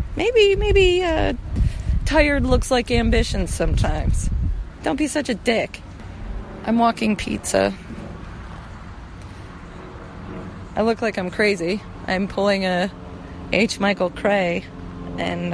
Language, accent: English, American